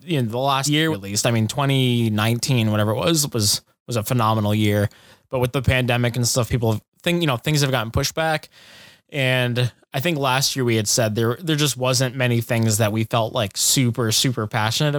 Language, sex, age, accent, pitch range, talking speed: English, male, 20-39, American, 115-140 Hz, 215 wpm